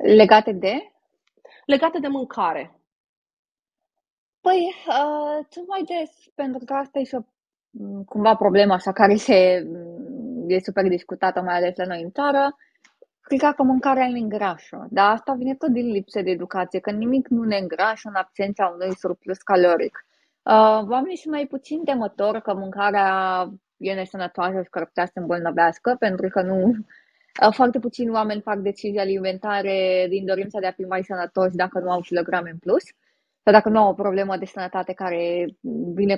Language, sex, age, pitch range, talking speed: Romanian, female, 20-39, 185-245 Hz, 165 wpm